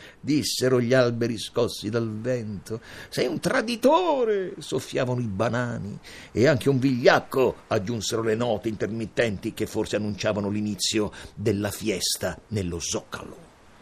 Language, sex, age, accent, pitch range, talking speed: Italian, male, 50-69, native, 110-180 Hz, 120 wpm